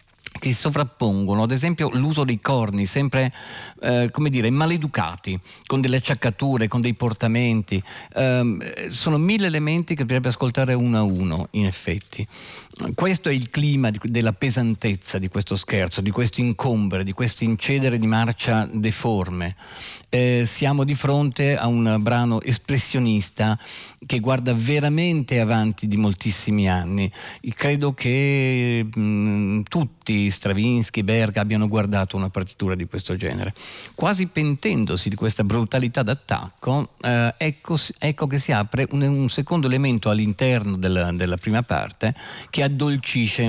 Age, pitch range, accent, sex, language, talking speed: 50-69, 105-135 Hz, native, male, Italian, 135 wpm